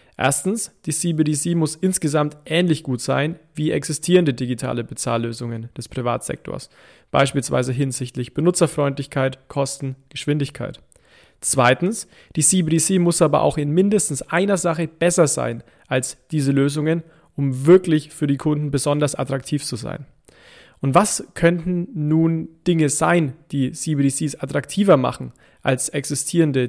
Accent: German